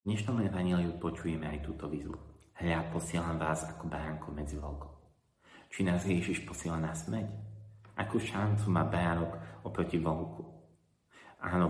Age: 30-49